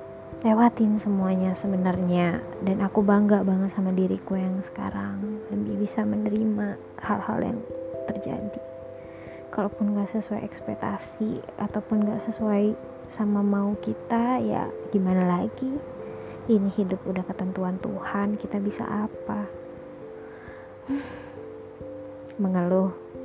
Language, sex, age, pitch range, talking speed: Indonesian, female, 20-39, 180-215 Hz, 100 wpm